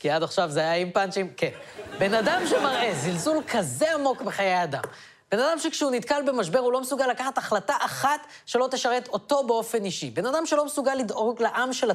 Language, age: Hebrew, 20-39